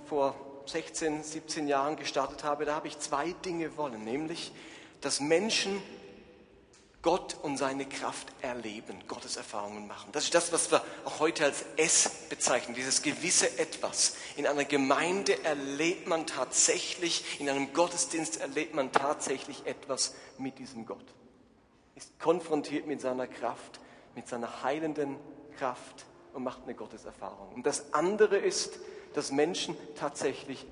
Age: 40-59